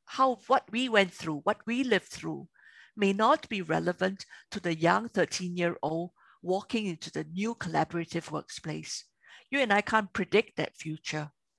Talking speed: 155 wpm